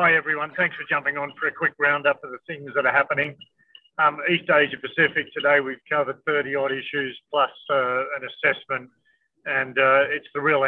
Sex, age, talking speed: male, 40-59, 195 wpm